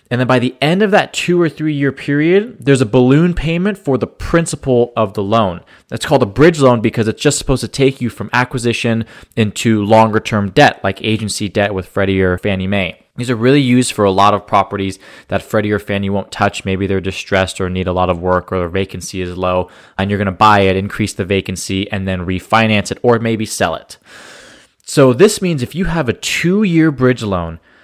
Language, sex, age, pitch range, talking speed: English, male, 20-39, 105-145 Hz, 220 wpm